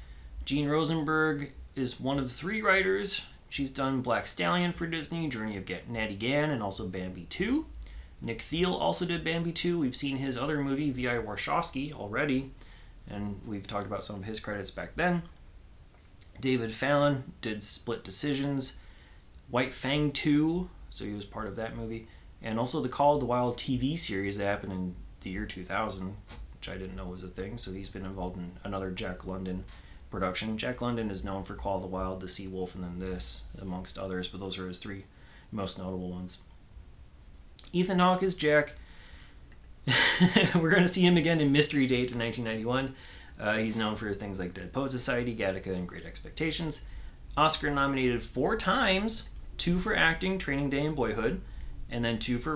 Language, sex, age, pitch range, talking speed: English, male, 30-49, 95-140 Hz, 185 wpm